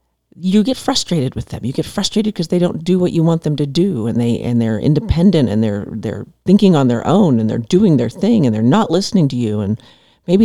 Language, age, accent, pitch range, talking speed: English, 50-69, American, 120-175 Hz, 245 wpm